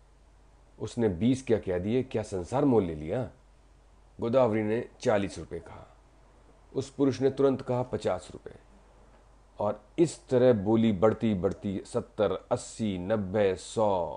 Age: 40-59